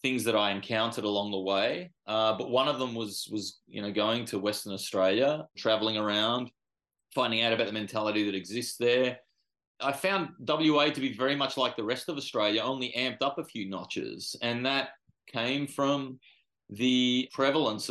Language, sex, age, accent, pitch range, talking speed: English, male, 30-49, Australian, 110-140 Hz, 175 wpm